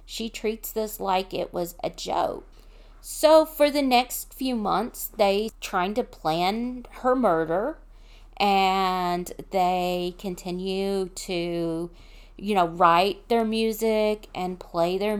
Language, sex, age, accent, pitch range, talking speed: English, female, 40-59, American, 175-225 Hz, 125 wpm